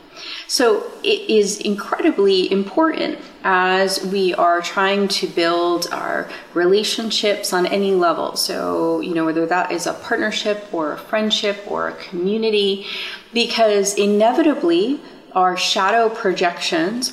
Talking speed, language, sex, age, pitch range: 125 wpm, English, female, 30-49, 175-230 Hz